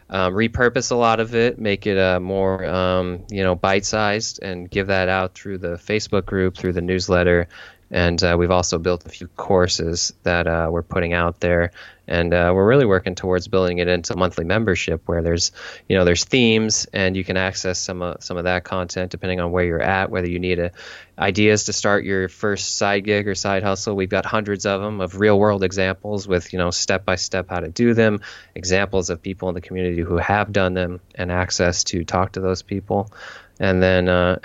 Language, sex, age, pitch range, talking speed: English, male, 20-39, 90-100 Hz, 215 wpm